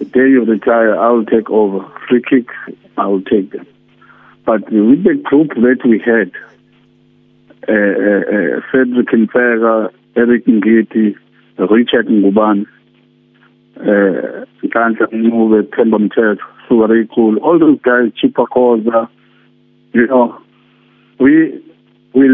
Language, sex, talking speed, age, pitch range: English, male, 110 wpm, 60-79, 115-155 Hz